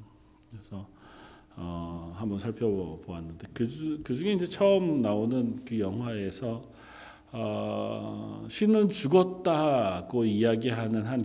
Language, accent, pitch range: Korean, native, 95-125 Hz